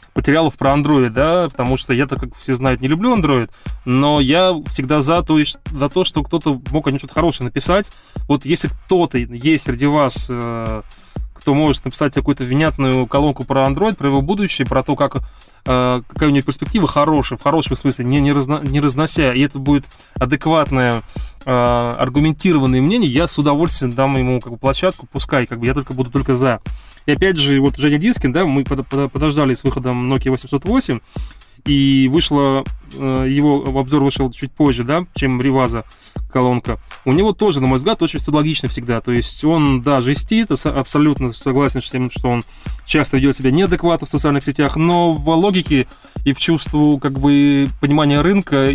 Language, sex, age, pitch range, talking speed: Russian, male, 20-39, 130-150 Hz, 180 wpm